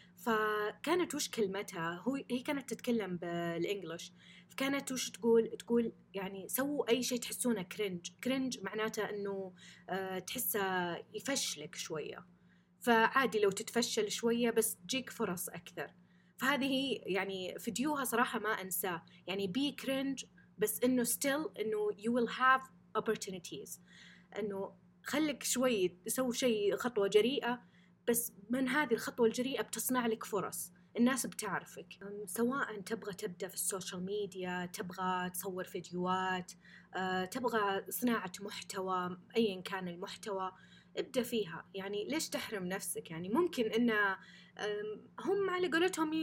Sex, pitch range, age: female, 185-245 Hz, 20-39